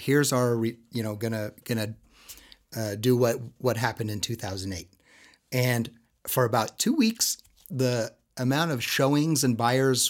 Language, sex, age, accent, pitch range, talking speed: English, male, 30-49, American, 115-140 Hz, 145 wpm